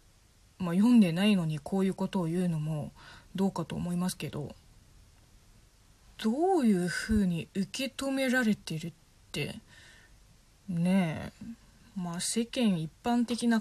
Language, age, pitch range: Japanese, 20-39, 170-245 Hz